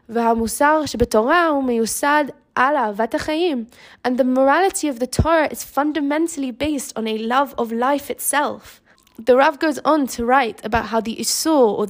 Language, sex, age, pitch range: English, female, 10-29, 225-290 Hz